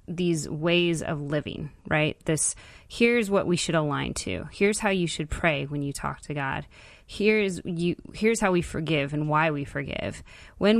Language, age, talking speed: English, 20-39, 185 wpm